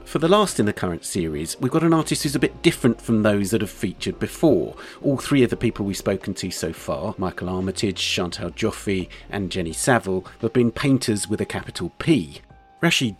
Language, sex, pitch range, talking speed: English, male, 95-130 Hz, 210 wpm